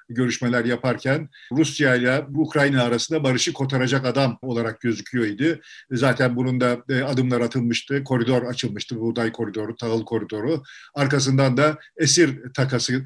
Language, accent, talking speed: Turkish, native, 120 wpm